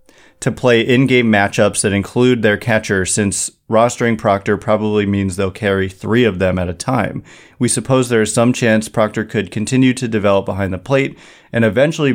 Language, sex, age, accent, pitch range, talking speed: English, male, 30-49, American, 100-125 Hz, 185 wpm